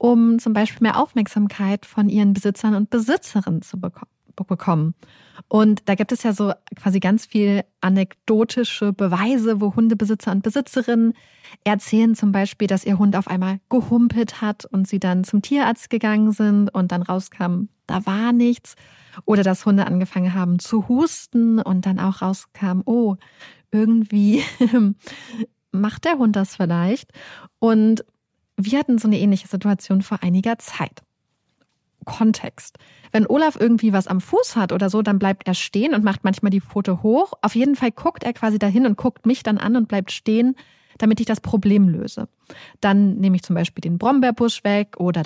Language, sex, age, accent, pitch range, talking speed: German, female, 30-49, German, 190-230 Hz, 170 wpm